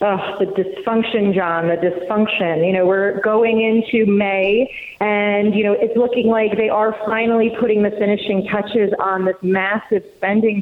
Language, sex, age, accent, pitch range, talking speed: English, female, 30-49, American, 190-215 Hz, 165 wpm